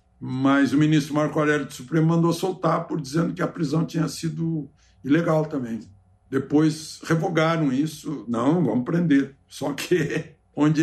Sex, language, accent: male, Portuguese, Brazilian